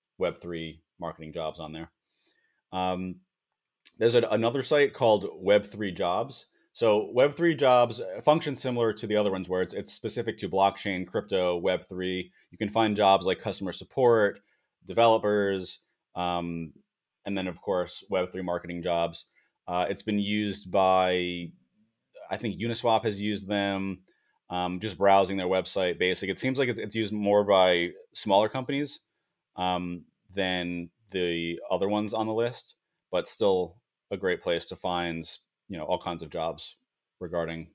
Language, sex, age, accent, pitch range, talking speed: English, male, 30-49, American, 85-110 Hz, 150 wpm